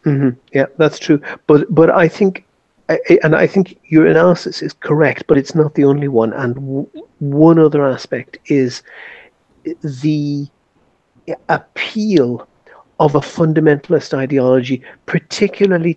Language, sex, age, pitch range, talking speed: English, male, 50-69, 130-165 Hz, 130 wpm